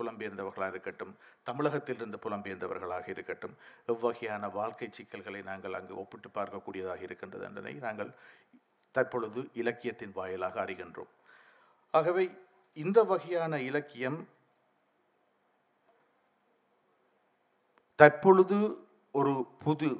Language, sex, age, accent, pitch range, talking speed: Tamil, male, 50-69, native, 115-155 Hz, 50 wpm